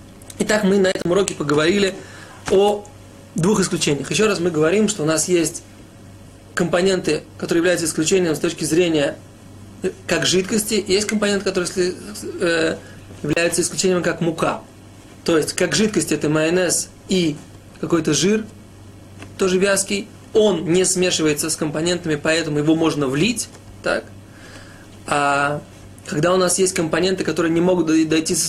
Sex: male